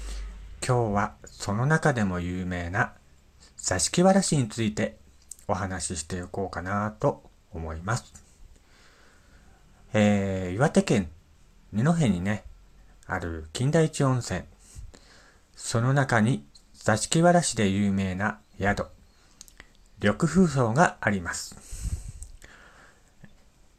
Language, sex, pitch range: Japanese, male, 80-115 Hz